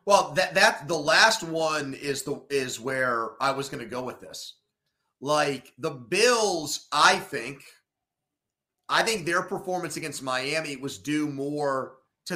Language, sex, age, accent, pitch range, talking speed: English, male, 30-49, American, 135-175 Hz, 155 wpm